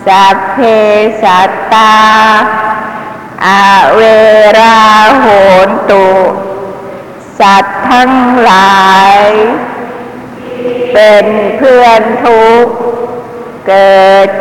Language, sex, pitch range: Thai, female, 195-220 Hz